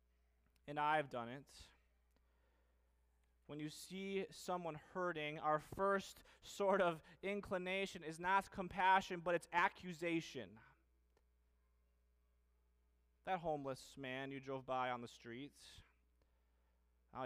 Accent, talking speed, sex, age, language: American, 100 wpm, male, 30-49, English